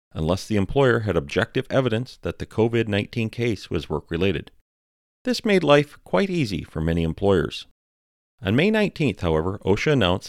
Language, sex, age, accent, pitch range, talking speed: English, male, 40-59, American, 85-120 Hz, 165 wpm